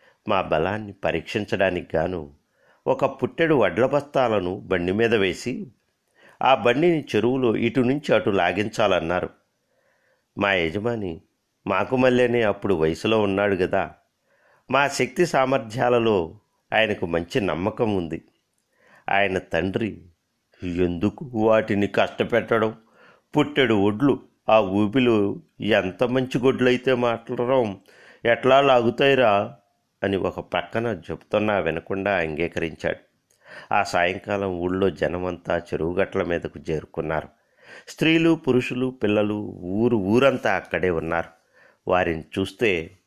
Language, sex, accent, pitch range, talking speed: Telugu, male, native, 90-125 Hz, 100 wpm